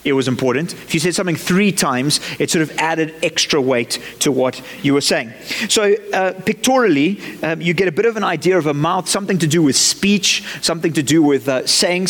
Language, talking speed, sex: English, 225 wpm, male